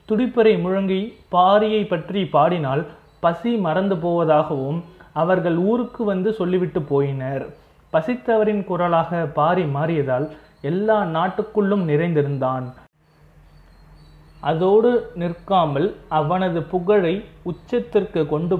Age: 30-49